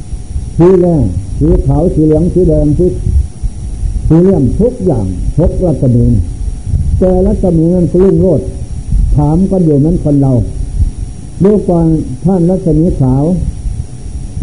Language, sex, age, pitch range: Thai, male, 60-79, 120-170 Hz